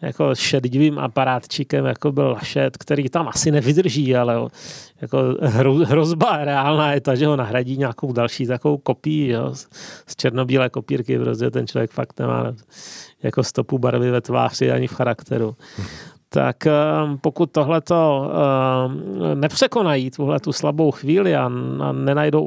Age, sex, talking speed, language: 30-49, male, 125 wpm, Czech